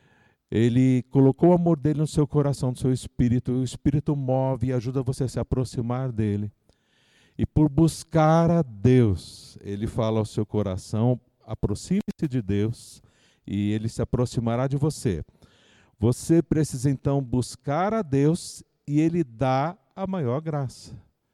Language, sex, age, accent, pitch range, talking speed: Portuguese, male, 50-69, Brazilian, 130-215 Hz, 145 wpm